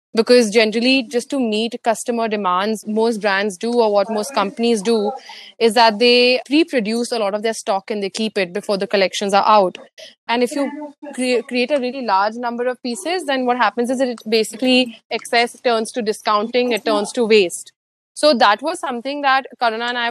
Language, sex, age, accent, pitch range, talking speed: English, female, 20-39, Indian, 215-250 Hz, 195 wpm